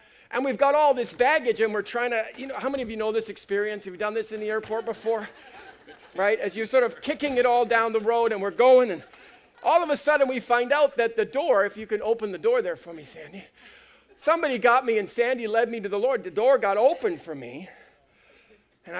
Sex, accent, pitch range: male, American, 210-300 Hz